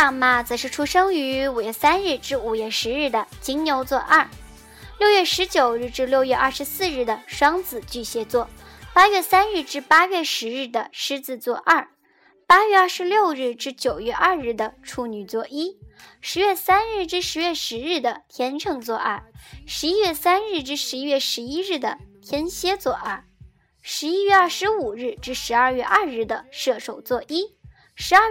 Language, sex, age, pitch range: Chinese, male, 10-29, 250-360 Hz